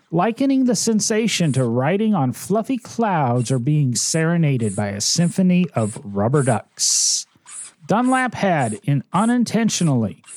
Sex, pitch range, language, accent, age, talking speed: male, 145-210 Hz, English, American, 40-59, 120 wpm